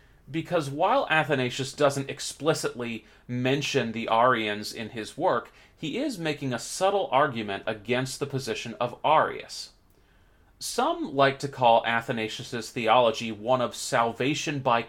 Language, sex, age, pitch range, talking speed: English, male, 30-49, 115-155 Hz, 130 wpm